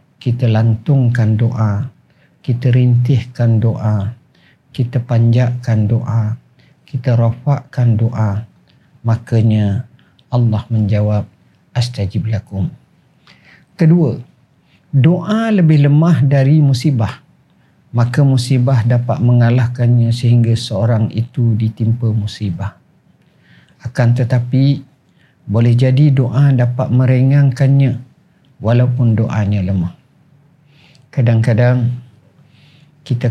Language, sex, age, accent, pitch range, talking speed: Indonesian, male, 50-69, native, 110-130 Hz, 75 wpm